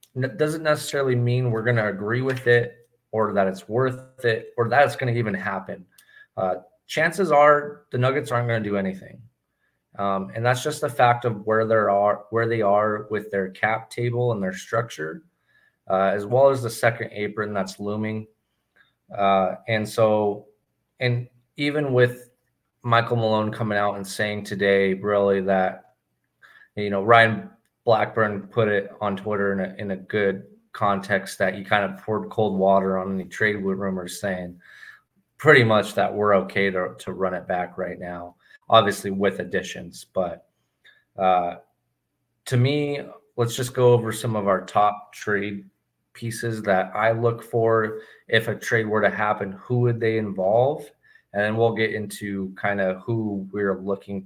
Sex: male